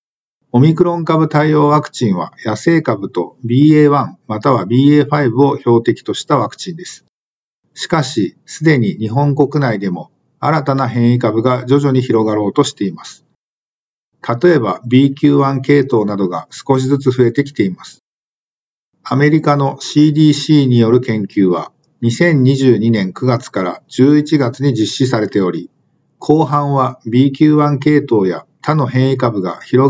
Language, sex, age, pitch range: Japanese, male, 50-69, 115-145 Hz